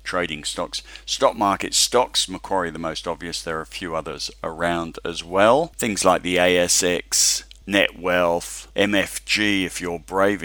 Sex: male